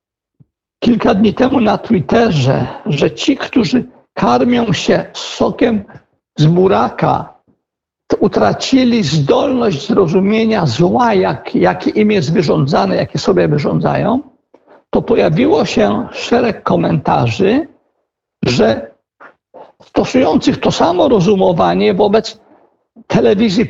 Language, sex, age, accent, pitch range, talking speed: Polish, male, 60-79, native, 200-250 Hz, 95 wpm